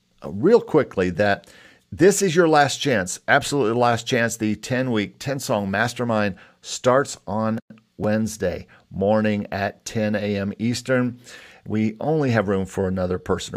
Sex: male